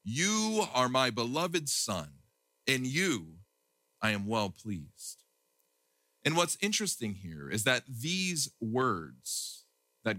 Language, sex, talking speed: English, male, 120 wpm